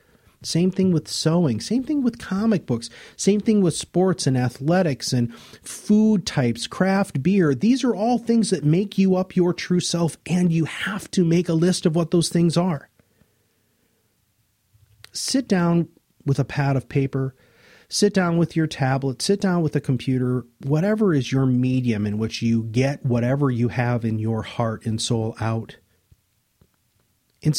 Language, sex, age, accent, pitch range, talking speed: English, male, 40-59, American, 110-160 Hz, 170 wpm